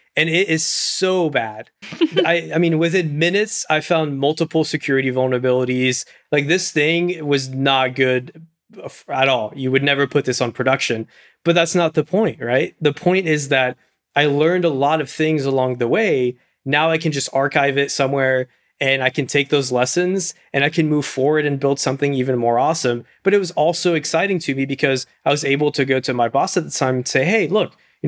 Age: 20-39